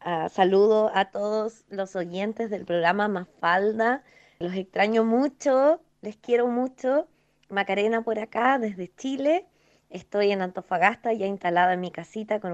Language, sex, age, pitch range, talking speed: English, female, 20-39, 190-230 Hz, 145 wpm